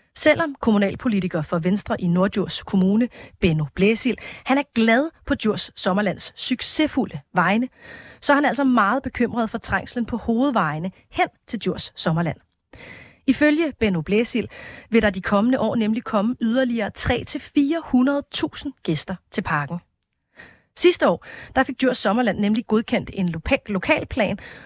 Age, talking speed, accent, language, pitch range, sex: 30-49, 135 wpm, native, Danish, 190-255 Hz, female